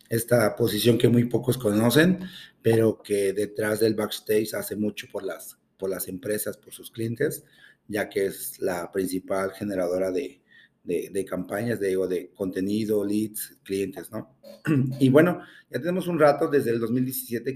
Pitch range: 105-130 Hz